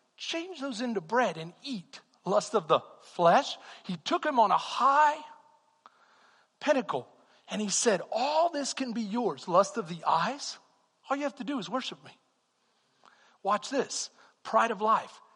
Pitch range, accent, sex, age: 155-245 Hz, American, male, 50-69